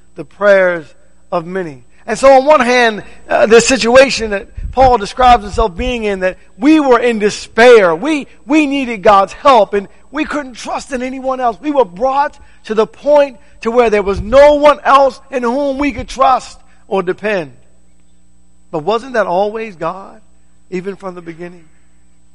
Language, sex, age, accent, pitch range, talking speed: English, male, 50-69, American, 165-240 Hz, 170 wpm